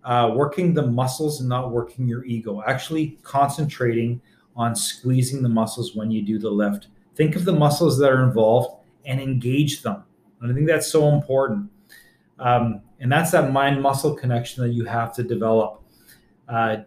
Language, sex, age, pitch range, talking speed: English, male, 40-59, 120-155 Hz, 170 wpm